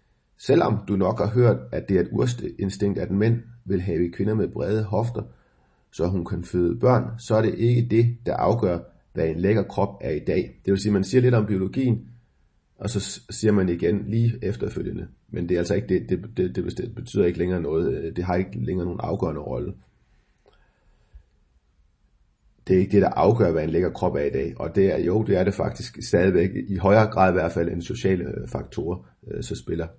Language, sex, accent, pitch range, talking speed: Danish, male, native, 85-105 Hz, 215 wpm